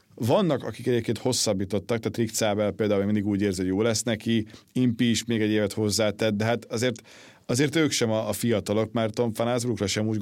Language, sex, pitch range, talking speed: Hungarian, male, 105-120 Hz, 200 wpm